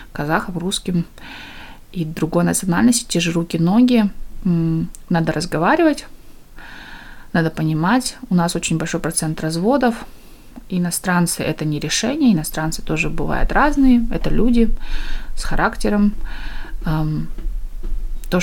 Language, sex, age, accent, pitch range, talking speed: Russian, female, 20-39, native, 160-205 Hz, 100 wpm